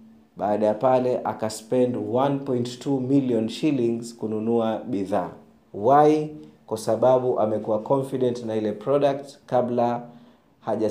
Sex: male